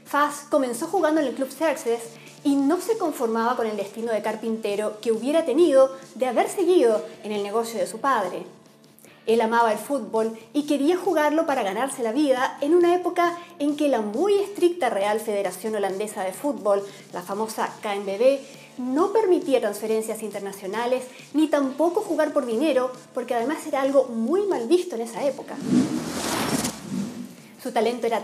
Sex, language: female, English